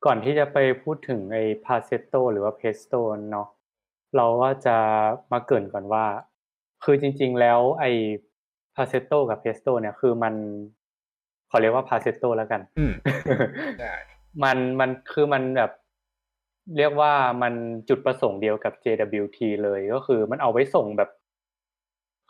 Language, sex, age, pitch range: Thai, male, 20-39, 105-130 Hz